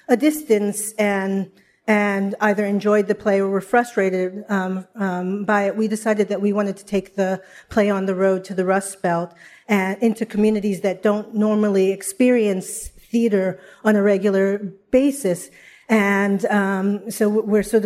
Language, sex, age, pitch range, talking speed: English, female, 40-59, 195-225 Hz, 160 wpm